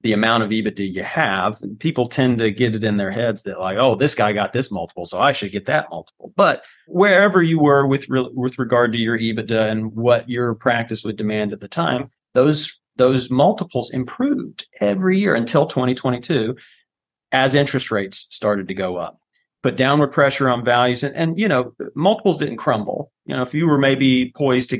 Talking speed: 200 wpm